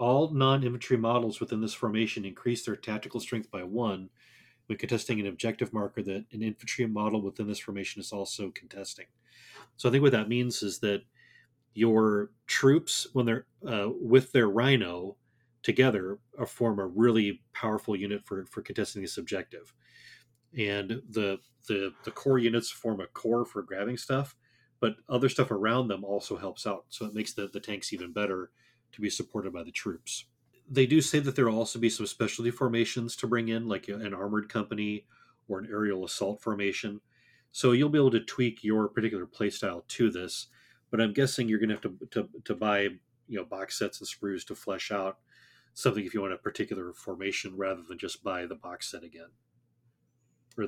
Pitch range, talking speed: 105-125 Hz, 190 wpm